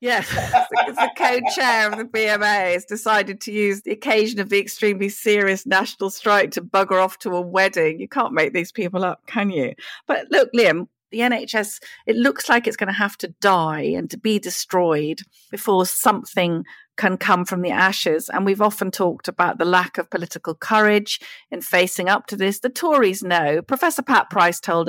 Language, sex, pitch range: English, female, 185-235 Hz